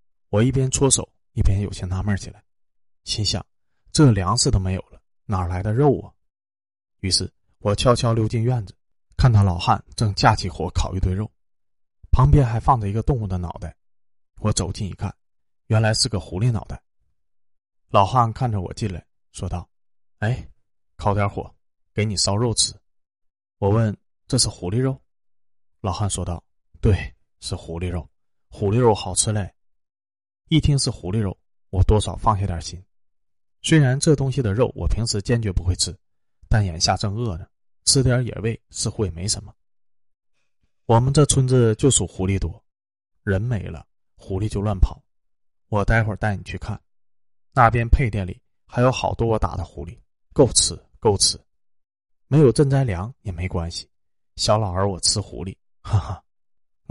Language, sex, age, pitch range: Chinese, male, 20-39, 90-115 Hz